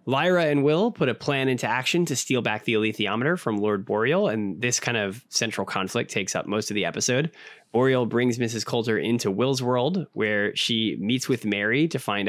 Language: English